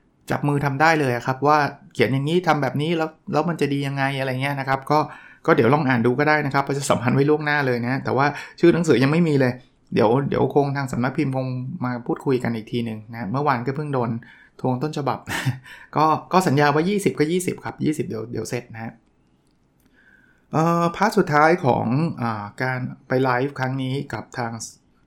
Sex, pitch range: male, 125-160 Hz